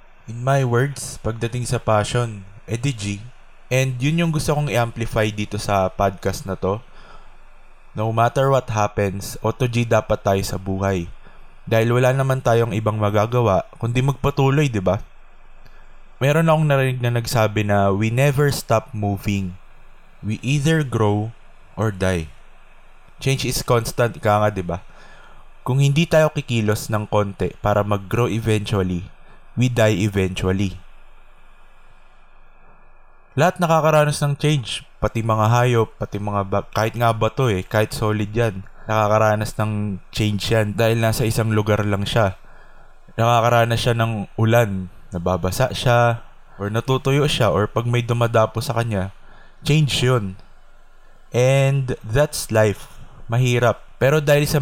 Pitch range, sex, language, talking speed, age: 105-125 Hz, male, Filipino, 135 wpm, 20-39